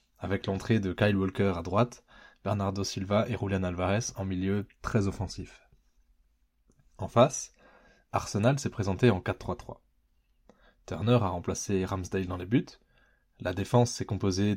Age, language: 20-39, French